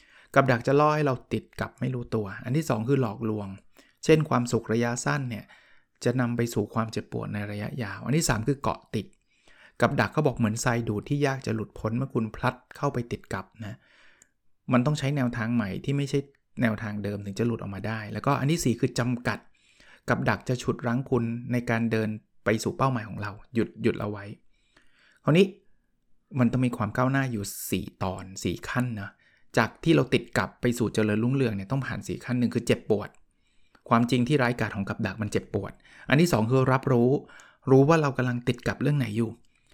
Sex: male